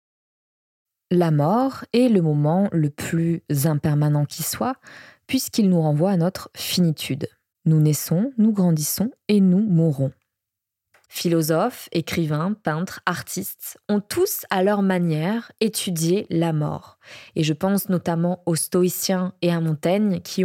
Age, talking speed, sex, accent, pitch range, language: 20-39, 130 wpm, female, French, 160-205 Hz, French